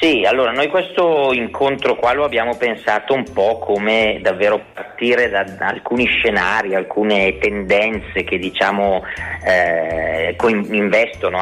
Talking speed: 130 wpm